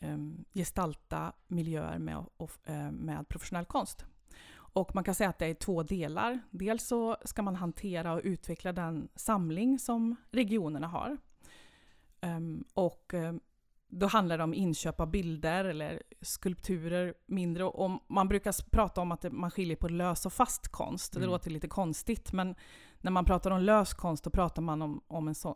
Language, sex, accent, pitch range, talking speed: Swedish, female, native, 165-200 Hz, 160 wpm